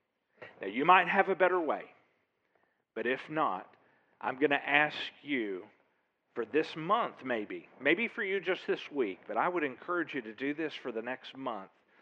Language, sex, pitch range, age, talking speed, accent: English, male, 140-195 Hz, 50-69, 185 wpm, American